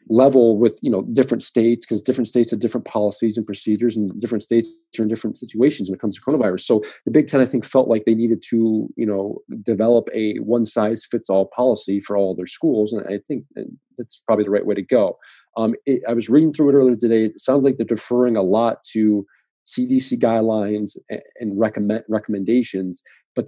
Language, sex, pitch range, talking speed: English, male, 105-120 Hz, 205 wpm